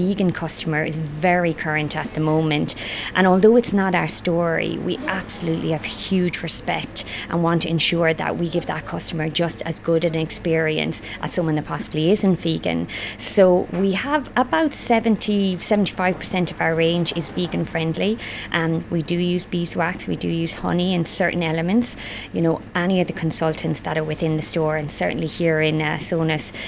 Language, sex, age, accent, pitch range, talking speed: English, female, 20-39, Irish, 155-175 Hz, 180 wpm